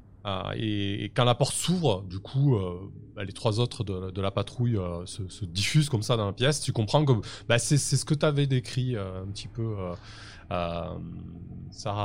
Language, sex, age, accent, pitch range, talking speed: French, male, 20-39, French, 100-125 Hz, 225 wpm